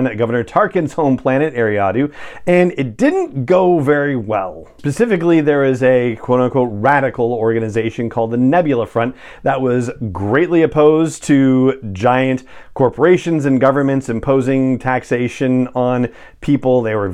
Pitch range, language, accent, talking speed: 115-145 Hz, English, American, 130 wpm